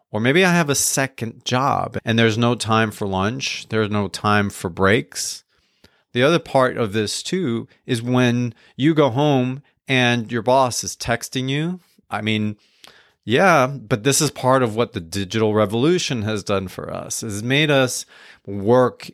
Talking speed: 170 wpm